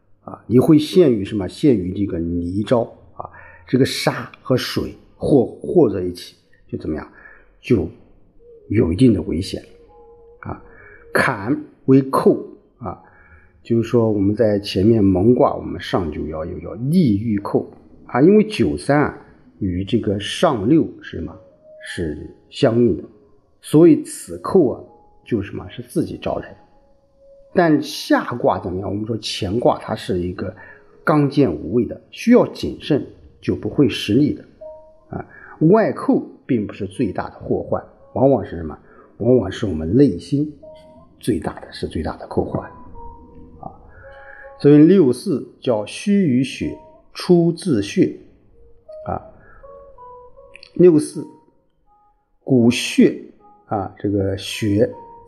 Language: Chinese